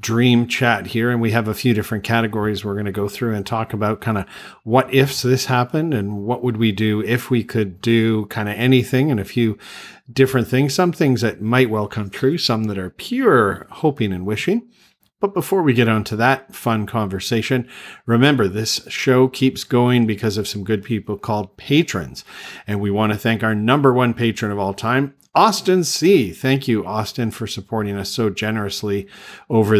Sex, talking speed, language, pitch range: male, 200 wpm, English, 100-125 Hz